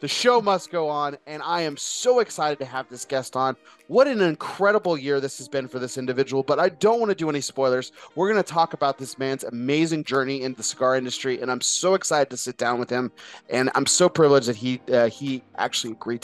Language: English